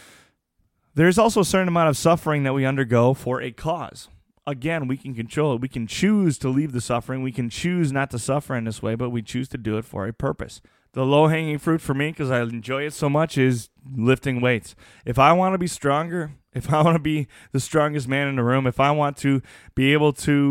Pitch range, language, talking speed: 130-160 Hz, English, 235 wpm